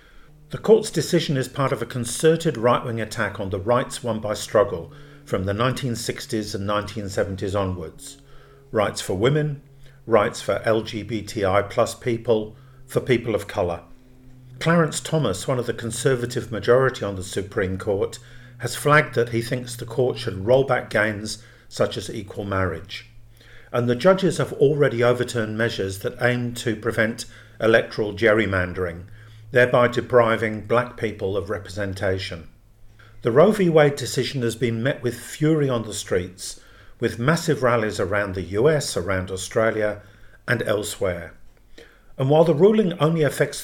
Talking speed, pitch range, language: 150 wpm, 105-130 Hz, English